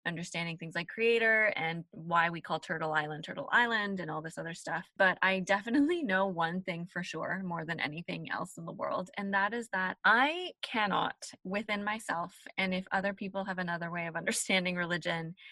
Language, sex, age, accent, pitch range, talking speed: English, female, 20-39, American, 165-200 Hz, 195 wpm